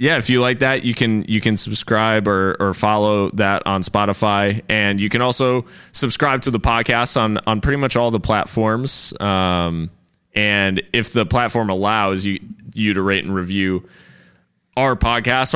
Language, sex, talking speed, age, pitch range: English, male, 175 wpm, 20-39, 95-110 Hz